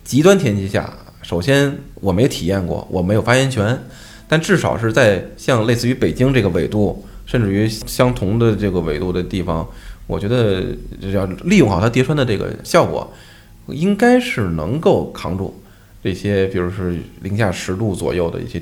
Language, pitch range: Chinese, 95-120 Hz